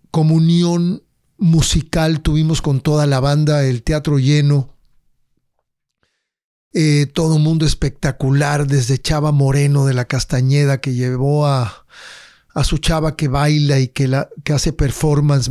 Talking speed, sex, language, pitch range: 130 wpm, male, English, 145-175 Hz